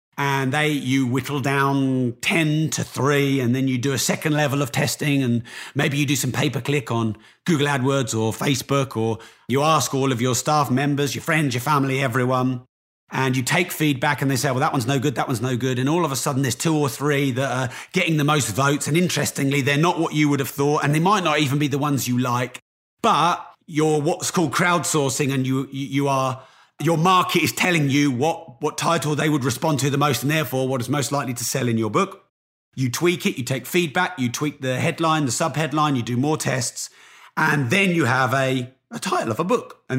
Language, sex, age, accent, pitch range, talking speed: English, male, 30-49, British, 130-165 Hz, 230 wpm